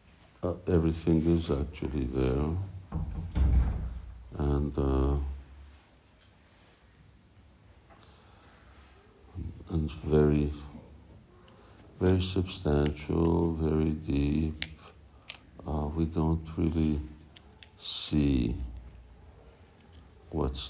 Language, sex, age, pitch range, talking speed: English, male, 60-79, 80-95 Hz, 55 wpm